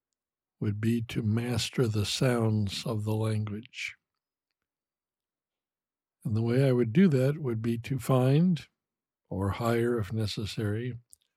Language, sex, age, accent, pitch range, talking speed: English, male, 60-79, American, 110-135 Hz, 125 wpm